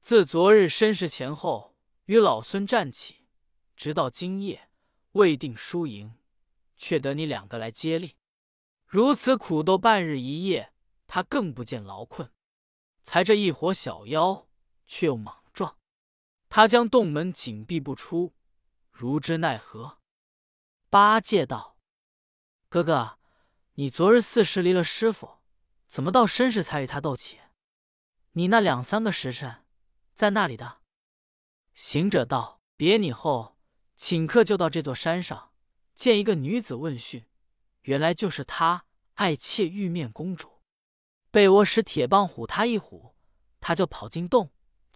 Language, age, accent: Chinese, 20-39, native